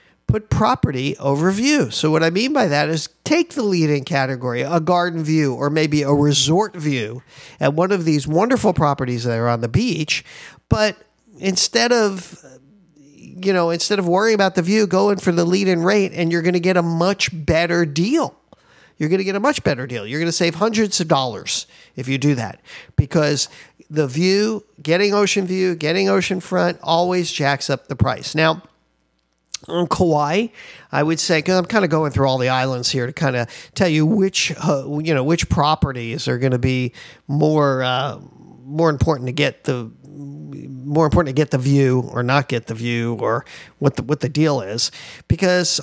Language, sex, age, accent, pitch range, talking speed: English, male, 50-69, American, 140-185 Hz, 200 wpm